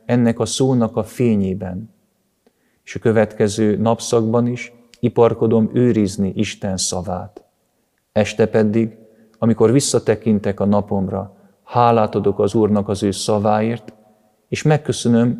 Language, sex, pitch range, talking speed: Hungarian, male, 100-115 Hz, 115 wpm